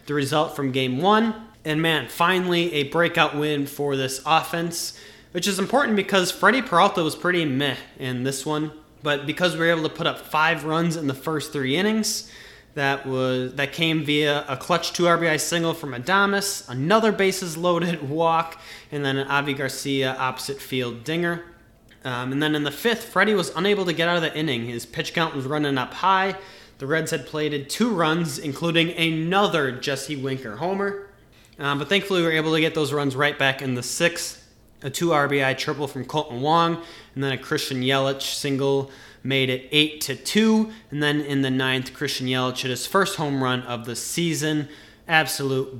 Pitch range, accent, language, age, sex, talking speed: 135-170 Hz, American, English, 20-39, male, 195 wpm